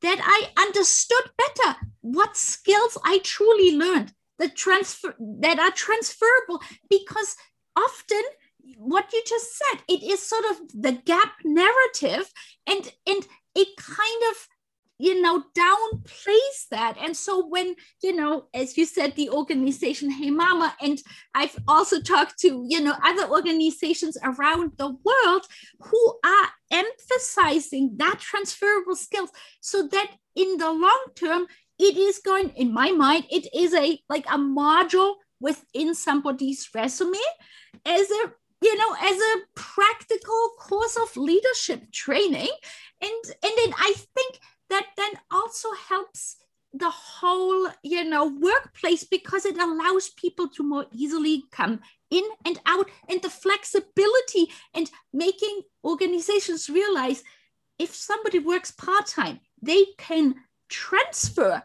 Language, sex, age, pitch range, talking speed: English, female, 30-49, 315-410 Hz, 130 wpm